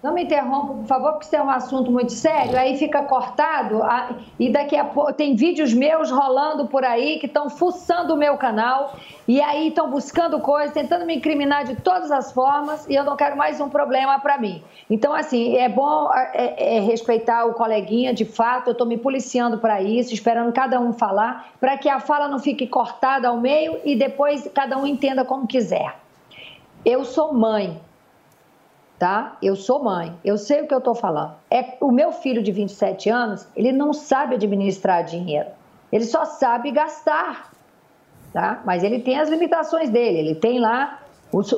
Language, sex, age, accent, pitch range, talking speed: Portuguese, female, 40-59, Brazilian, 235-290 Hz, 180 wpm